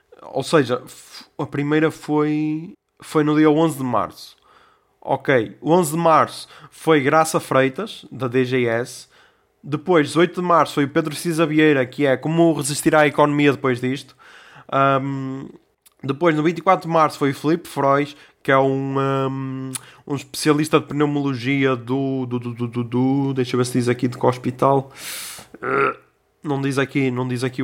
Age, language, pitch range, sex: 20-39, Portuguese, 135-160 Hz, male